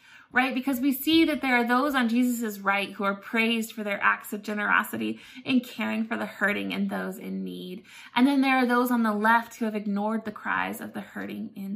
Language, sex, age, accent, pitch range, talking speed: English, female, 20-39, American, 210-280 Hz, 230 wpm